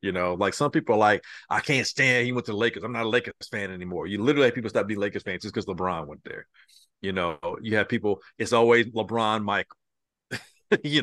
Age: 50-69